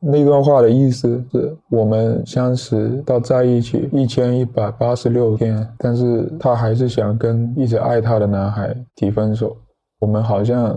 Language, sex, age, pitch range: Chinese, male, 20-39, 115-130 Hz